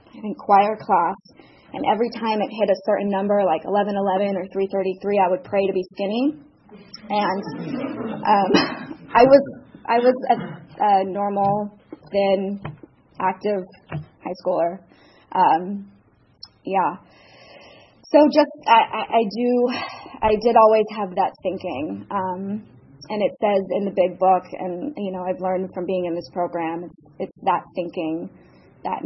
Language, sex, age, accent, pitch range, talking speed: English, female, 20-39, American, 185-220 Hz, 150 wpm